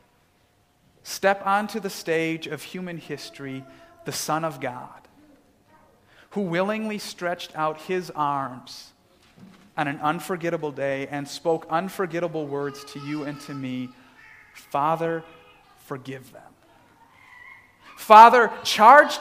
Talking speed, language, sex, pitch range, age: 110 wpm, English, male, 160-215 Hz, 40-59